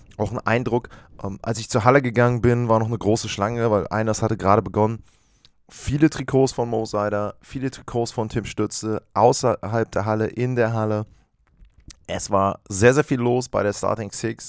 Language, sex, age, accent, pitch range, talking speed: German, male, 20-39, German, 105-125 Hz, 195 wpm